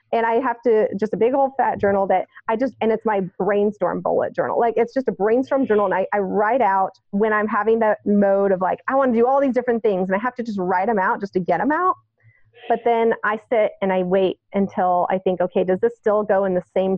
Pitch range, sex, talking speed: 185-225 Hz, female, 270 wpm